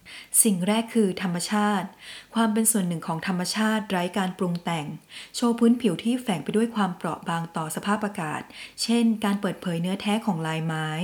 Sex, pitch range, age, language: female, 165-215 Hz, 20-39, Thai